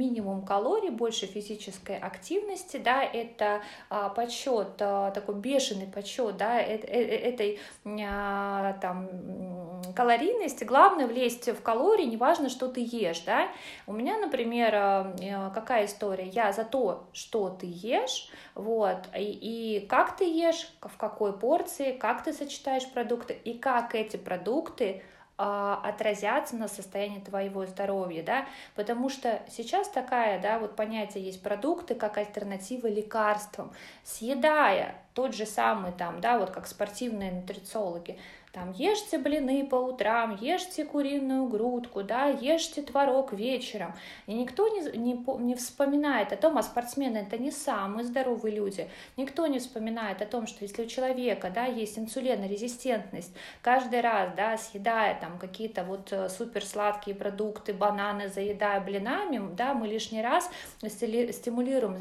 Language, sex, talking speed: Russian, female, 125 wpm